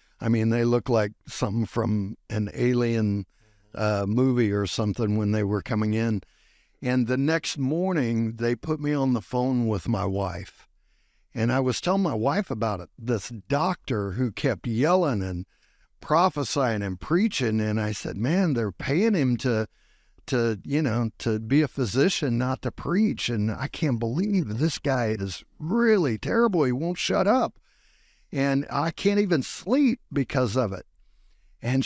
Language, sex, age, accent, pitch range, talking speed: English, male, 60-79, American, 110-140 Hz, 165 wpm